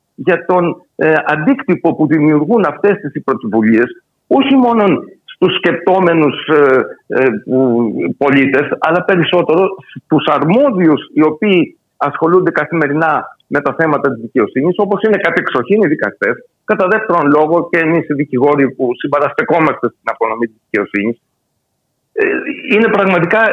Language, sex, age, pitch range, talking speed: Greek, male, 60-79, 140-190 Hz, 130 wpm